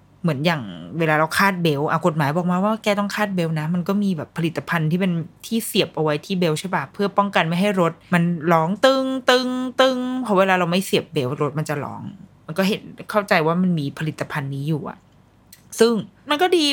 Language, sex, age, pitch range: Thai, female, 20-39, 150-190 Hz